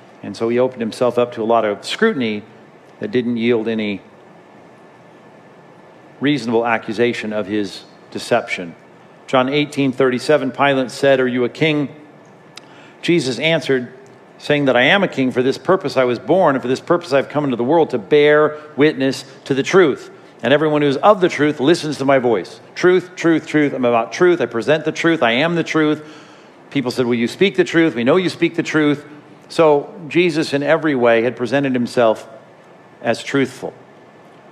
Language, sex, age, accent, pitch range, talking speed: English, male, 50-69, American, 125-150 Hz, 185 wpm